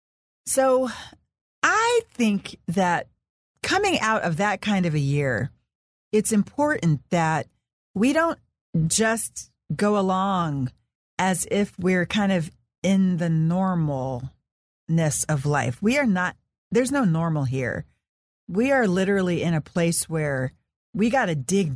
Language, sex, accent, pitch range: English, female, American, 155-215 Hz